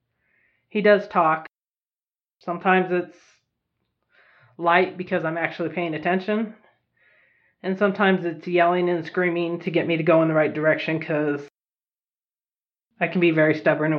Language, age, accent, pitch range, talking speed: English, 20-39, American, 155-180 Hz, 140 wpm